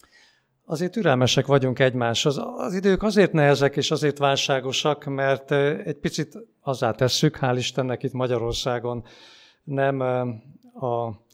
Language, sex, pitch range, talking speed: Hungarian, male, 125-150 Hz, 120 wpm